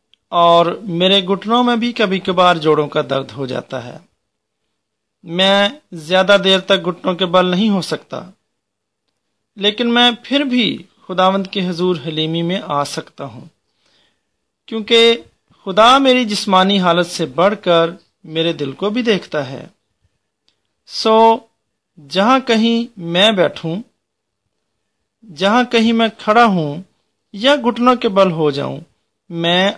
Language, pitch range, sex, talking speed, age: English, 170-225 Hz, male, 130 wpm, 40-59